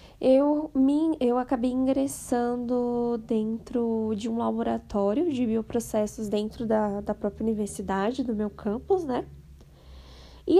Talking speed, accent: 115 wpm, Brazilian